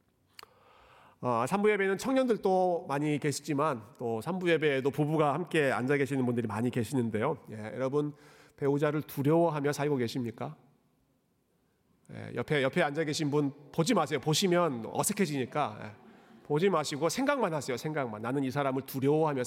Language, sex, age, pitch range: Korean, male, 40-59, 125-180 Hz